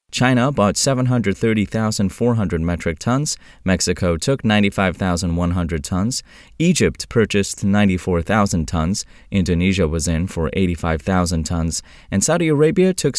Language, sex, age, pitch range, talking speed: English, male, 20-39, 90-115 Hz, 105 wpm